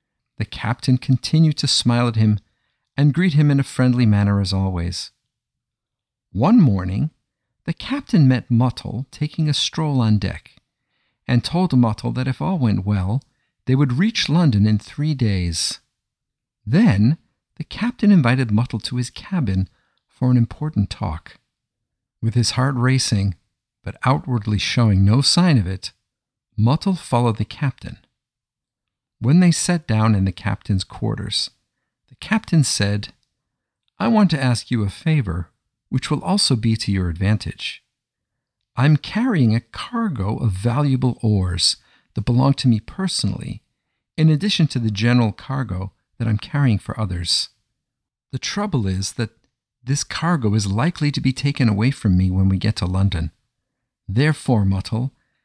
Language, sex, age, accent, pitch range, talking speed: English, male, 50-69, American, 105-140 Hz, 150 wpm